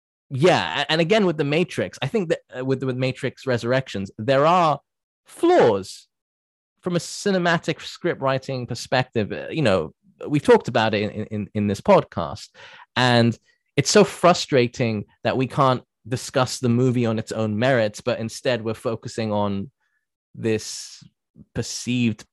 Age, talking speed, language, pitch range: 20-39, 145 wpm, English, 100-130 Hz